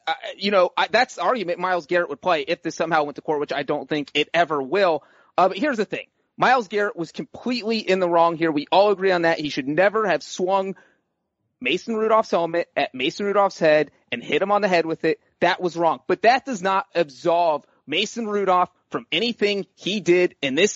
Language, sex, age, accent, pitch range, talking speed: English, male, 30-49, American, 175-235 Hz, 225 wpm